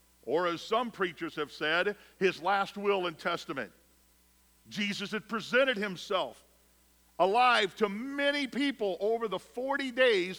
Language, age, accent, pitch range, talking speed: English, 50-69, American, 160-225 Hz, 135 wpm